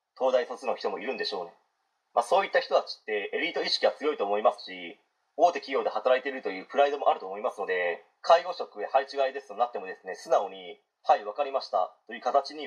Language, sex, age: Japanese, male, 30-49